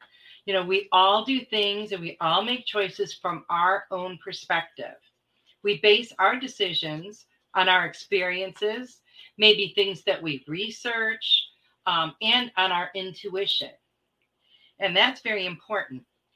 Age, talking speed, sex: 40-59, 130 wpm, female